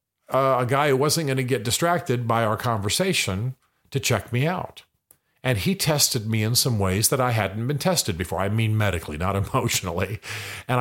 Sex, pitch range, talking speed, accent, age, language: male, 105-135 Hz, 195 wpm, American, 50-69, English